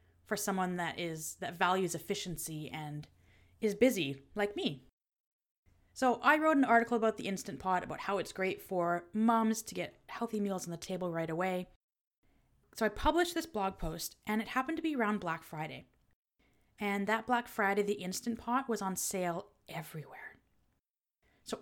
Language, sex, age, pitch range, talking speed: English, female, 20-39, 185-240 Hz, 170 wpm